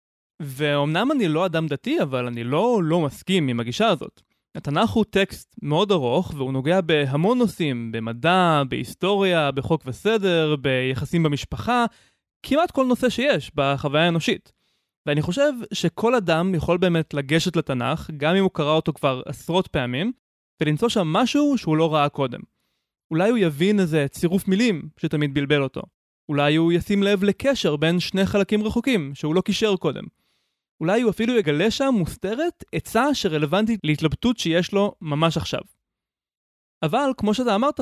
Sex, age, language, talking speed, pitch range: male, 20-39, Hebrew, 150 wpm, 150-205 Hz